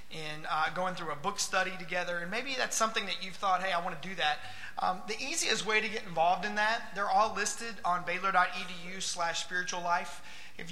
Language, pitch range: English, 160-190 Hz